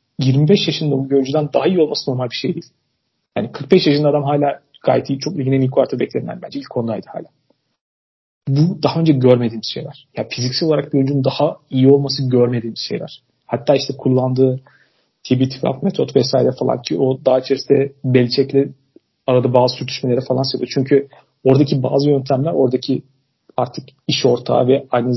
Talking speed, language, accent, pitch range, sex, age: 160 wpm, Turkish, native, 130-150 Hz, male, 40-59